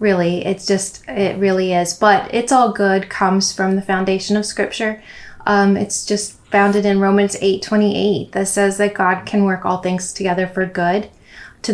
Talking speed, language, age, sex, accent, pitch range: 190 wpm, English, 20-39, female, American, 185-210 Hz